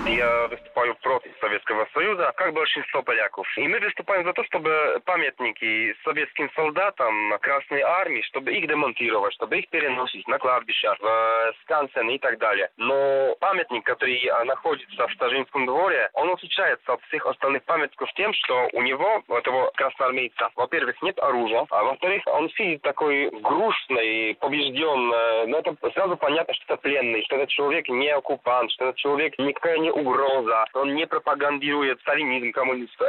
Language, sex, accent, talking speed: Russian, male, Polish, 155 wpm